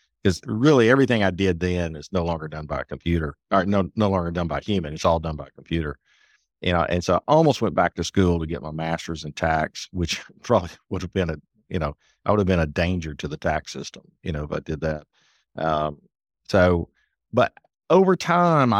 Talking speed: 225 wpm